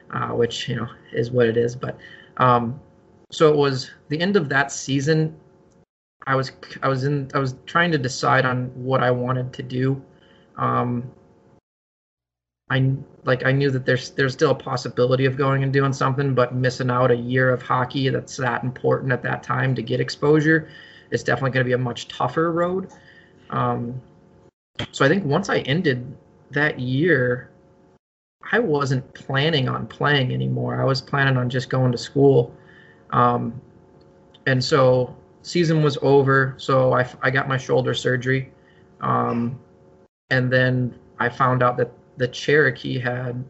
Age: 20-39